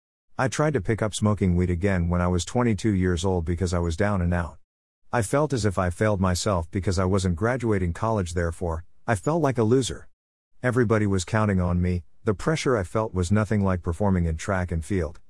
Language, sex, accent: English, male, American